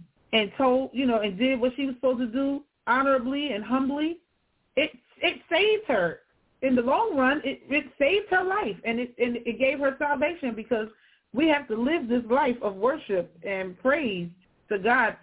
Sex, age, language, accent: female, 40-59, English, American